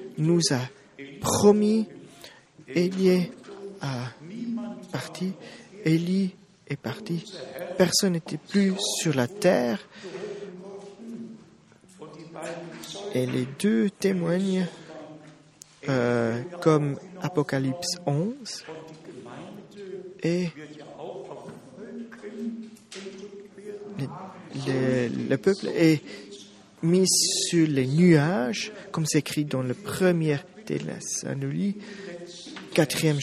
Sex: male